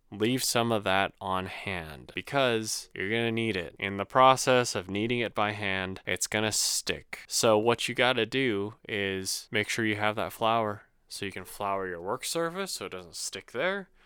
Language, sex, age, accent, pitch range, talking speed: English, male, 20-39, American, 100-125 Hz, 210 wpm